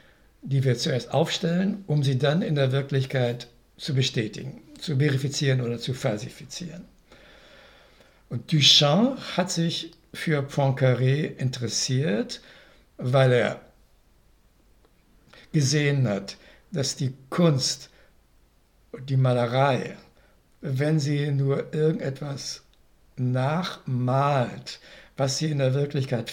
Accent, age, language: German, 60-79, German